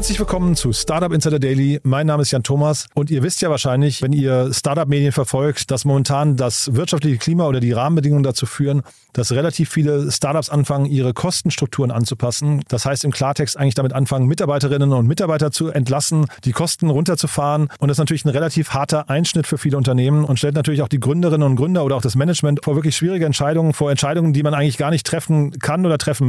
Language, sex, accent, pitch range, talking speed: German, male, German, 140-160 Hz, 210 wpm